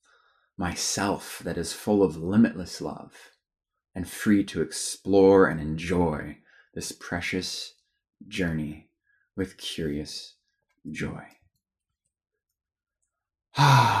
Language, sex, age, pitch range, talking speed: English, male, 20-39, 85-105 Hz, 85 wpm